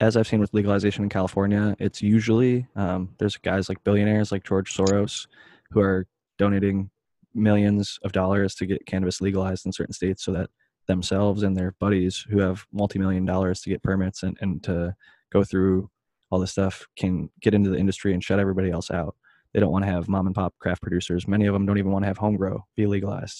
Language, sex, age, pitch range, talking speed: English, male, 20-39, 95-105 Hz, 215 wpm